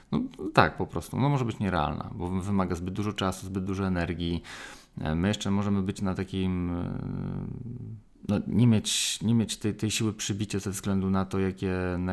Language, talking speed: Polish, 165 wpm